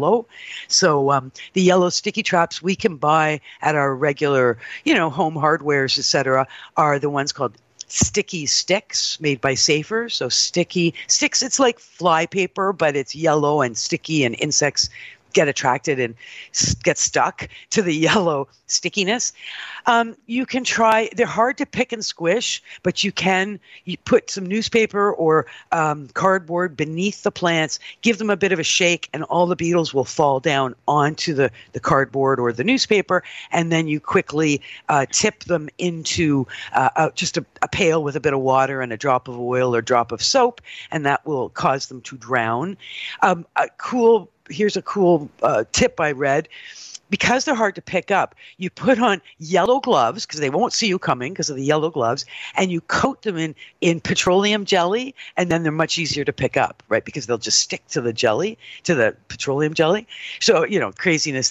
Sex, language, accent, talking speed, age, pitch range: female, English, American, 185 wpm, 50-69, 145-200 Hz